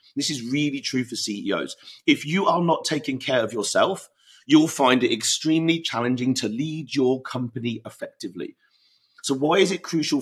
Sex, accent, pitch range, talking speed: male, British, 130-160 Hz, 170 wpm